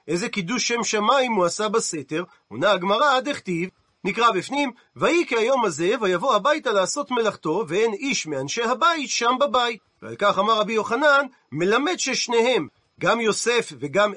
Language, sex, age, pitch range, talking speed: Hebrew, male, 40-59, 185-260 Hz, 155 wpm